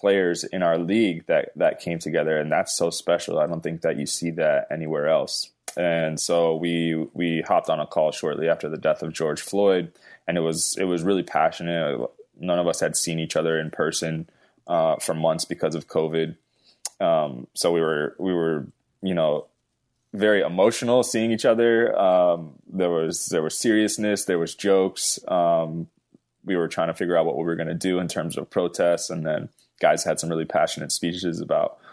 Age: 20-39